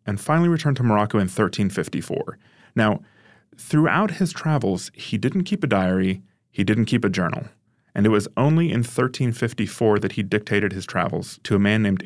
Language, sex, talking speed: English, male, 180 wpm